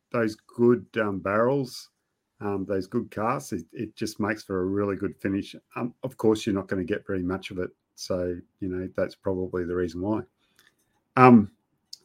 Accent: Australian